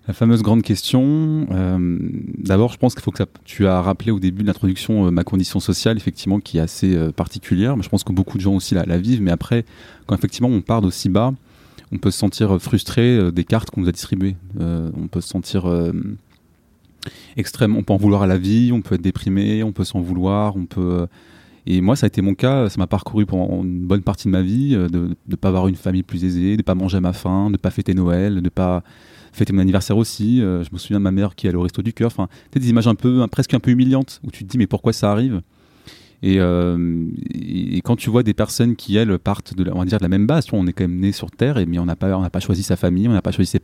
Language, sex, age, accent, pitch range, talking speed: French, male, 20-39, French, 90-110 Hz, 280 wpm